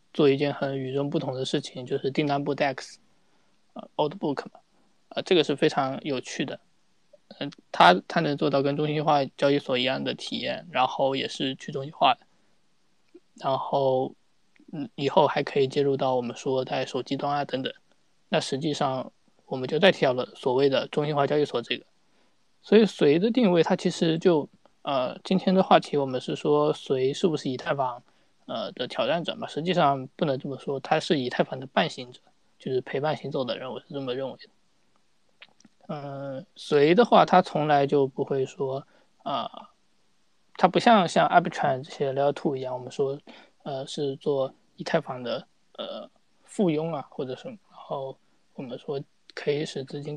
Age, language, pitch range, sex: 20-39, Chinese, 135-165 Hz, male